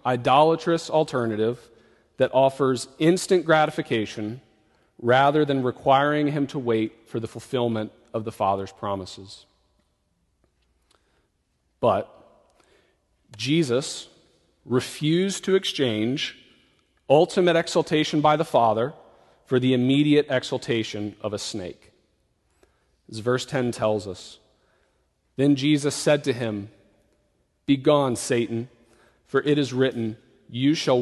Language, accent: English, American